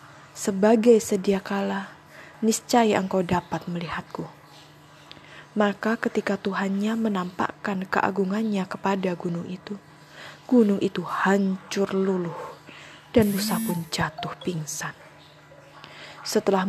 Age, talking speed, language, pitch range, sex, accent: 20-39, 90 wpm, Indonesian, 175-215 Hz, female, native